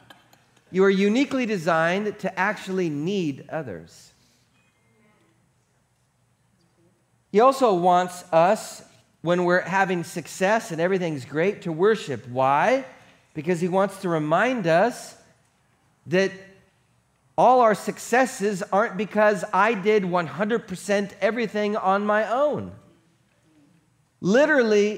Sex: male